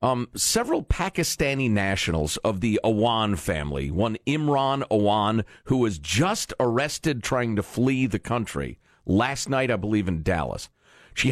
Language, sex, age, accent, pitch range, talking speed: English, male, 40-59, American, 110-165 Hz, 145 wpm